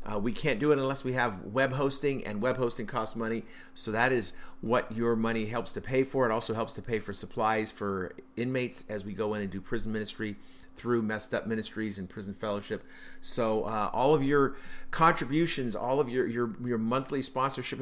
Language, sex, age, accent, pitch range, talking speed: English, male, 50-69, American, 110-140 Hz, 210 wpm